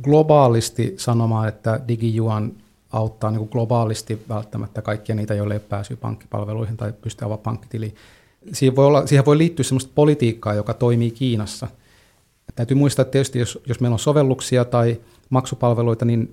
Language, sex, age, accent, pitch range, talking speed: Finnish, male, 30-49, native, 110-125 Hz, 145 wpm